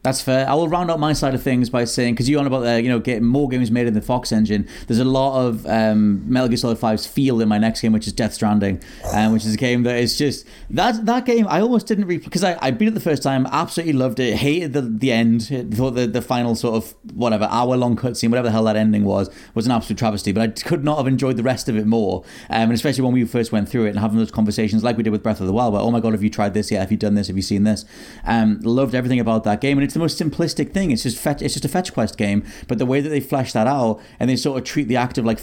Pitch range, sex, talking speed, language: 110-135 Hz, male, 310 wpm, English